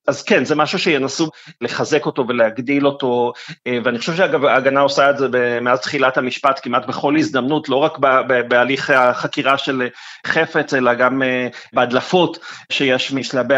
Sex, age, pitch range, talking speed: male, 30-49, 125-150 Hz, 145 wpm